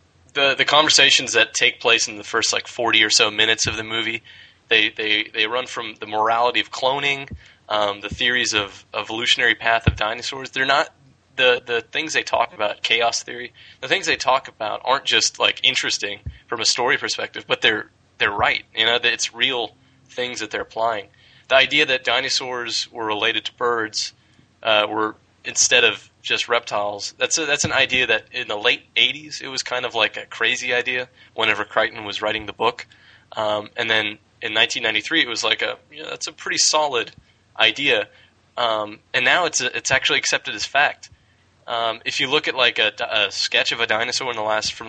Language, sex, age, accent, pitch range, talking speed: English, male, 20-39, American, 105-125 Hz, 200 wpm